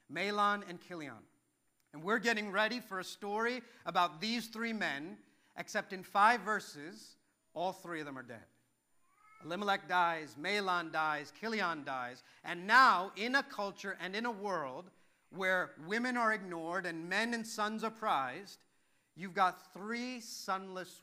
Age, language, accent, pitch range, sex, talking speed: 50-69, English, American, 165-225 Hz, male, 150 wpm